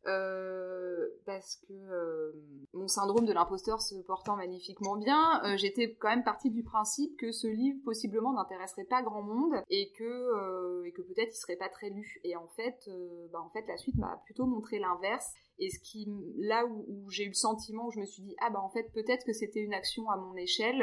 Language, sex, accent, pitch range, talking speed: French, female, French, 185-230 Hz, 225 wpm